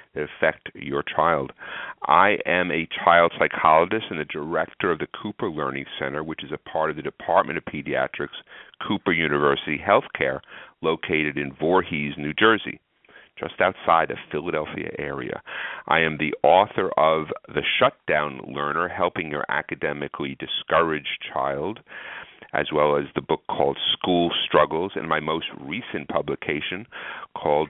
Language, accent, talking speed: English, American, 145 wpm